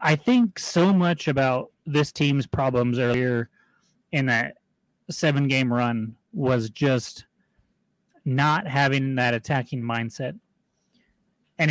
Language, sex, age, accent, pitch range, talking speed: English, male, 30-49, American, 120-175 Hz, 115 wpm